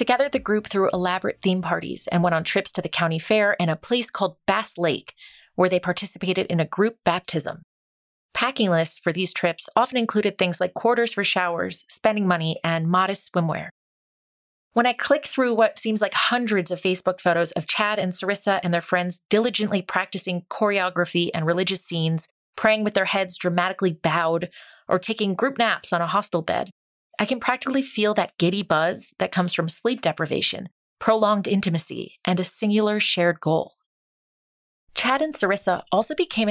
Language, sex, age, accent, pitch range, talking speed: English, female, 30-49, American, 175-215 Hz, 175 wpm